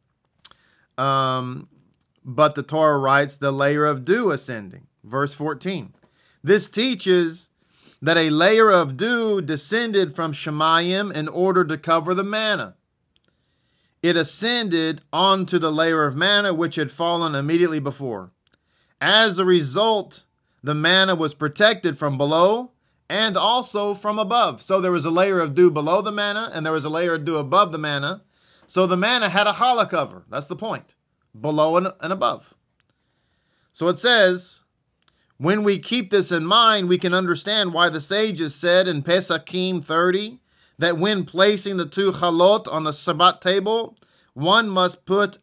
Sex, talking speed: male, 155 wpm